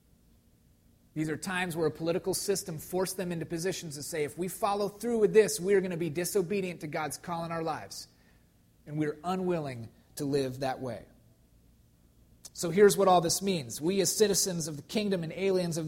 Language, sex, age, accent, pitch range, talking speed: English, male, 30-49, American, 150-185 Hz, 205 wpm